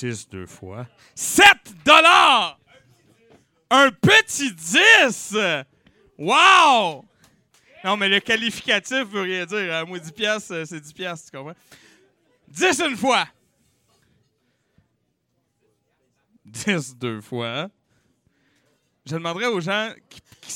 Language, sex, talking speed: French, male, 105 wpm